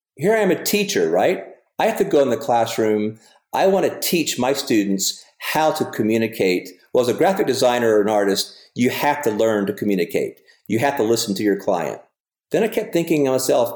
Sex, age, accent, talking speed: male, 50-69, American, 215 wpm